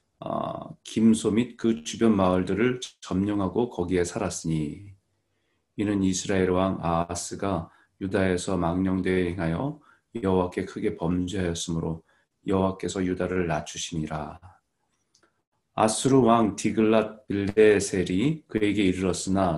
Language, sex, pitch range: Korean, male, 85-105 Hz